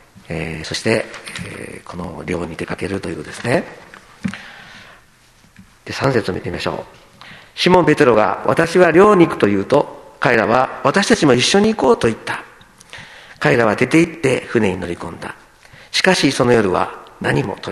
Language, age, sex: Japanese, 50-69, male